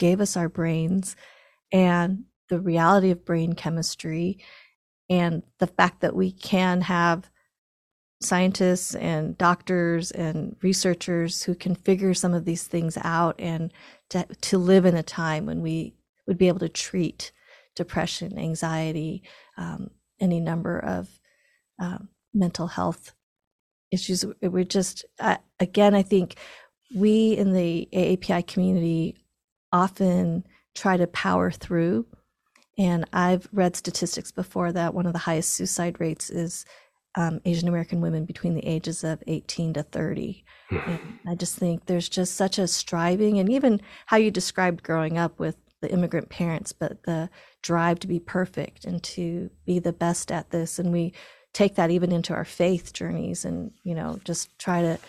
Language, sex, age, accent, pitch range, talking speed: English, female, 40-59, American, 170-190 Hz, 155 wpm